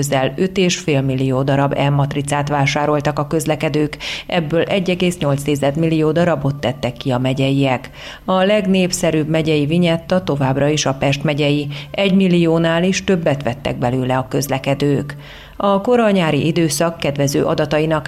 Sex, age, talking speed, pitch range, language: female, 30-49, 130 wpm, 140-175 Hz, Hungarian